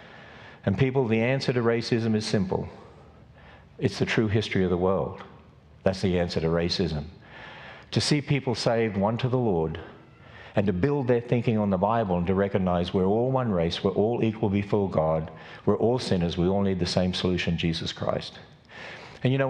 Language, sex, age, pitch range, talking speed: English, male, 50-69, 105-155 Hz, 190 wpm